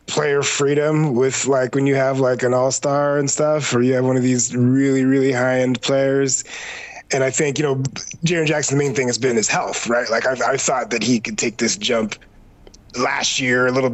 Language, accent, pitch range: English, American, 130-170 Hz